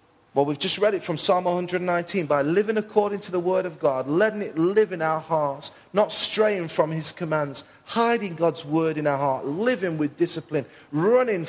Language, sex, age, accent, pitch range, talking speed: English, male, 30-49, British, 170-245 Hz, 195 wpm